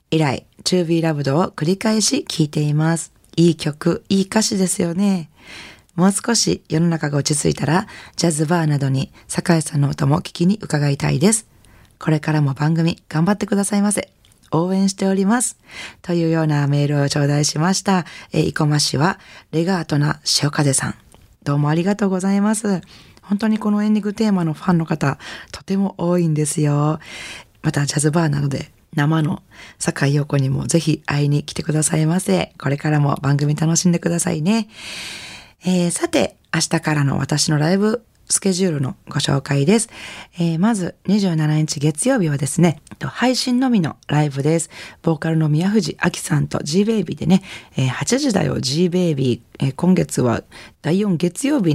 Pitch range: 150-190 Hz